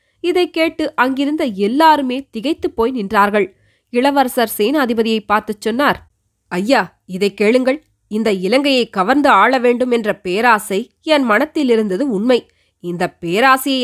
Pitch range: 195-255 Hz